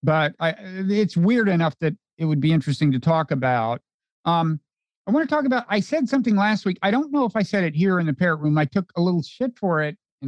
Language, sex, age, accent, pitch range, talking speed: English, male, 50-69, American, 150-195 Hz, 250 wpm